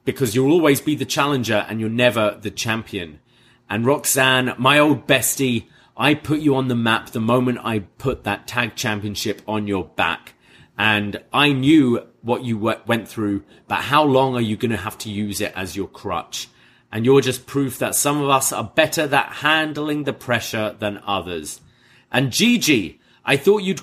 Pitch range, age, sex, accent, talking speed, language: 110-145 Hz, 30-49, male, British, 185 wpm, English